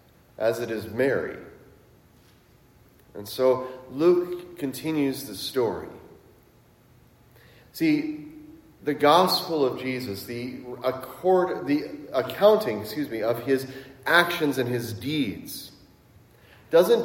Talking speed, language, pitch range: 100 wpm, English, 120-155 Hz